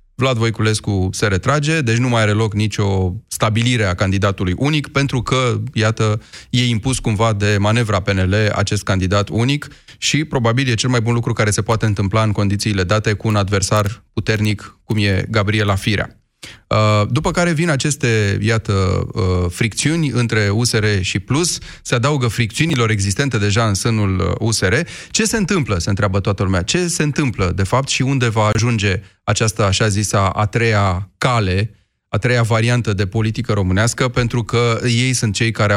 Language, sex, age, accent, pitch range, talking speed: Romanian, male, 30-49, native, 105-130 Hz, 170 wpm